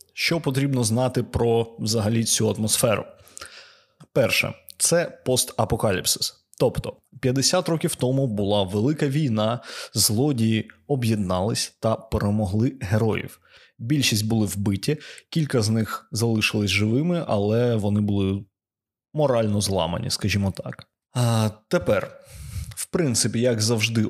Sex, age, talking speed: male, 20-39, 105 wpm